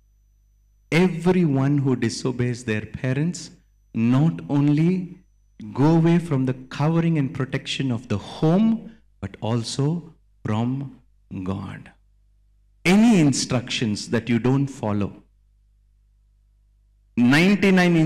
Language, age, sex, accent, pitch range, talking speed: Telugu, 50-69, male, native, 105-165 Hz, 95 wpm